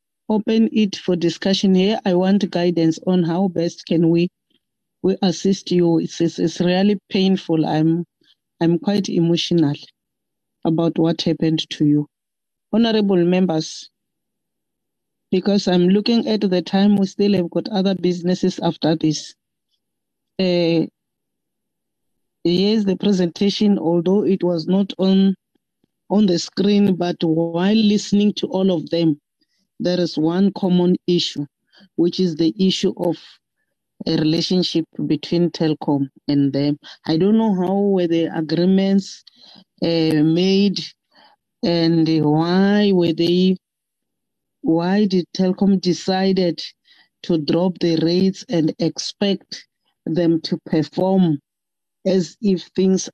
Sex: female